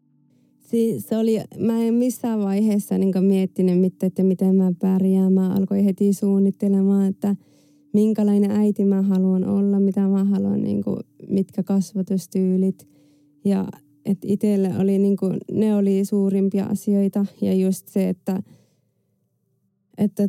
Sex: female